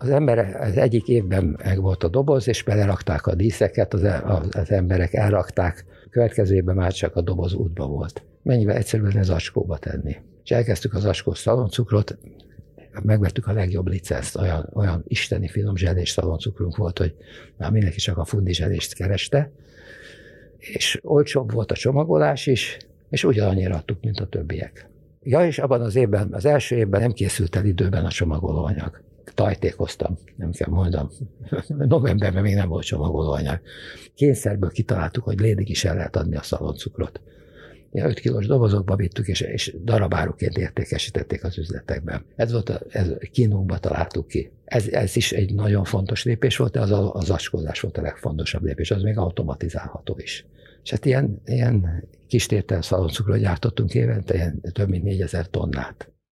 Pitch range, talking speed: 90-110 Hz, 160 wpm